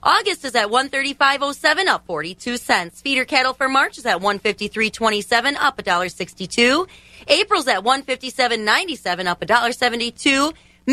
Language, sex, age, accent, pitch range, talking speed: English, female, 30-49, American, 215-305 Hz, 115 wpm